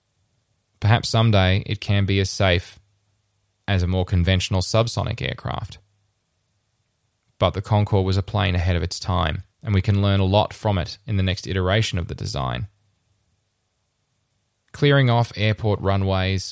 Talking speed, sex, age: 155 wpm, male, 20-39